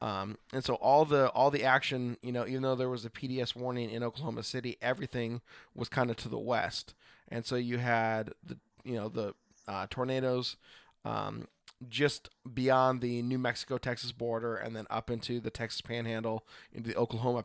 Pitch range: 115-130 Hz